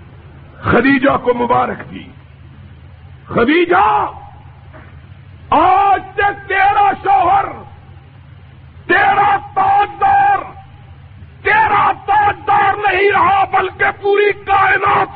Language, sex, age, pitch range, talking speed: Urdu, male, 50-69, 310-400 Hz, 70 wpm